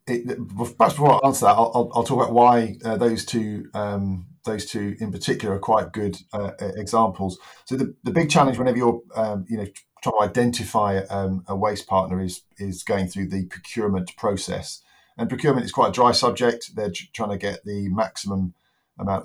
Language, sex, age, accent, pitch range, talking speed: English, male, 40-59, British, 95-110 Hz, 195 wpm